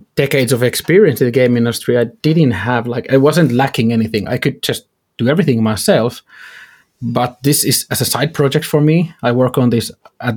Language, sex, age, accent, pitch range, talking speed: English, male, 30-49, Finnish, 120-150 Hz, 205 wpm